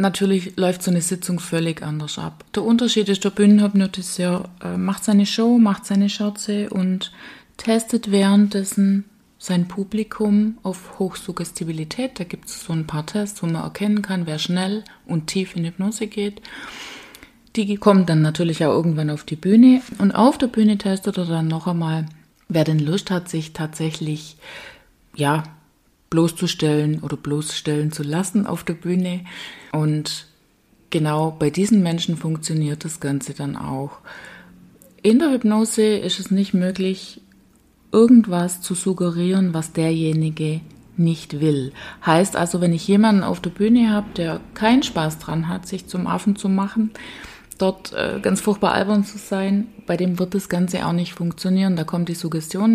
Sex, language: female, German